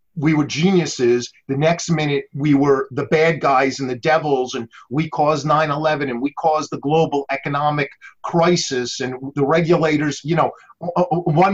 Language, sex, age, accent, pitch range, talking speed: English, male, 40-59, American, 135-165 Hz, 165 wpm